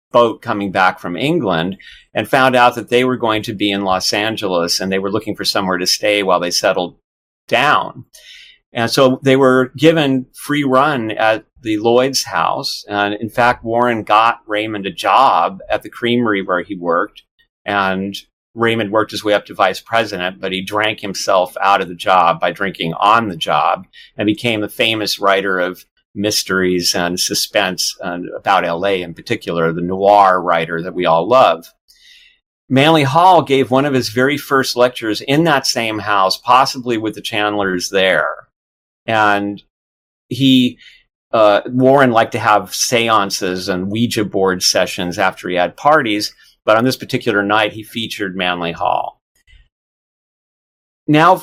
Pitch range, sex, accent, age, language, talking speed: 95-125 Hz, male, American, 50-69, English, 165 wpm